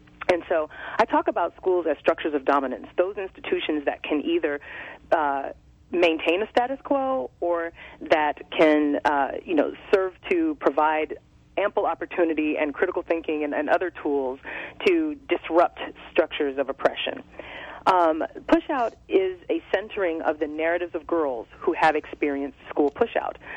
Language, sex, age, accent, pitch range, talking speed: English, female, 30-49, American, 150-230 Hz, 150 wpm